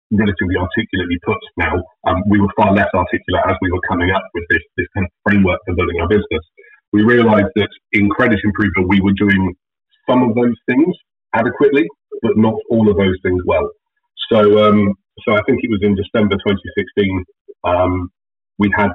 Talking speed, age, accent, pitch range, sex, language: 185 wpm, 30-49, British, 95-105 Hz, male, English